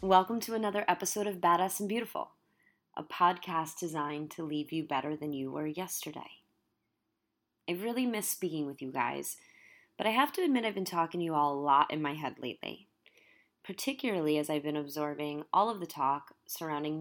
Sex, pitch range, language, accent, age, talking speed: female, 150-205 Hz, English, American, 30-49, 185 wpm